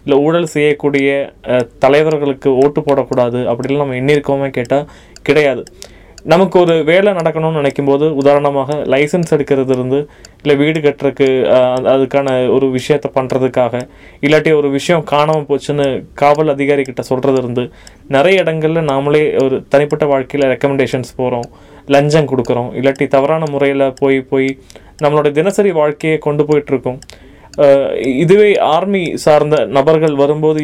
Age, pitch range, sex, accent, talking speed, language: 20-39, 135-155 Hz, male, native, 120 wpm, Tamil